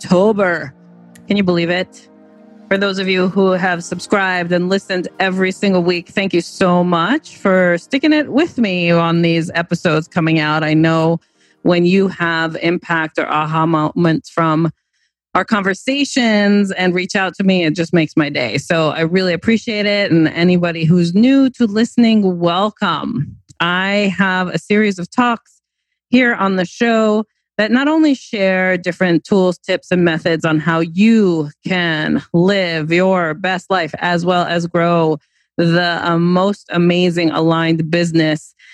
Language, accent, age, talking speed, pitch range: English, American, 30-49, 155 wpm, 165-195 Hz